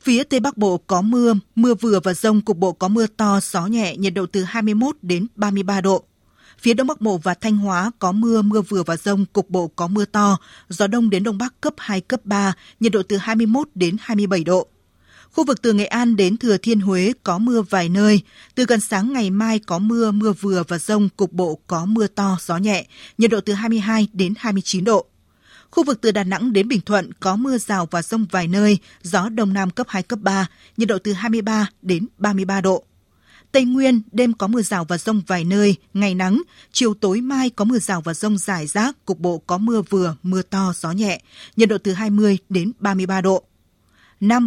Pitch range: 190-225 Hz